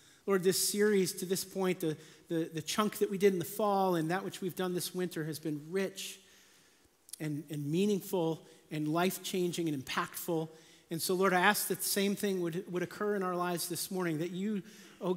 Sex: male